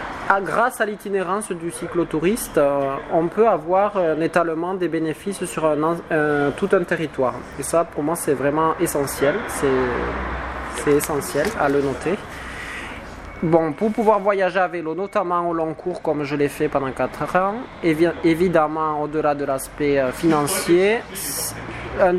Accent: French